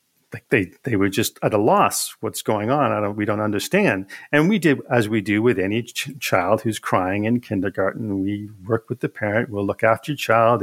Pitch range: 105-130 Hz